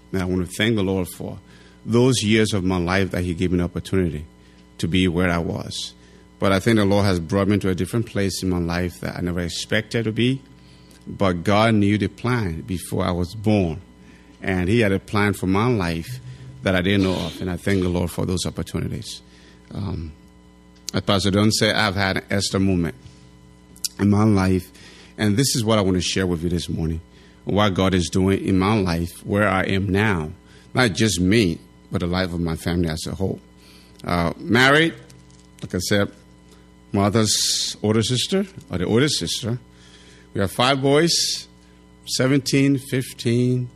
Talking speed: 195 wpm